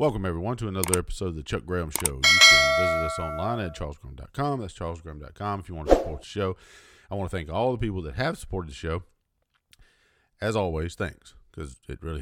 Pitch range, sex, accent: 85-110 Hz, male, American